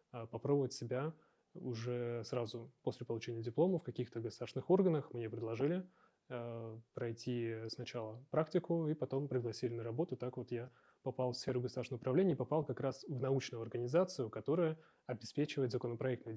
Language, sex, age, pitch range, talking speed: Russian, male, 20-39, 120-140 Hz, 145 wpm